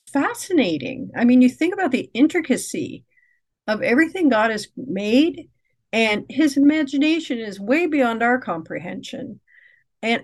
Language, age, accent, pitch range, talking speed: English, 50-69, American, 195-260 Hz, 130 wpm